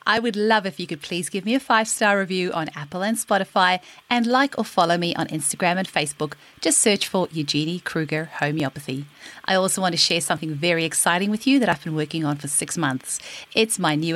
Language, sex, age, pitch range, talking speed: English, female, 40-59, 165-220 Hz, 220 wpm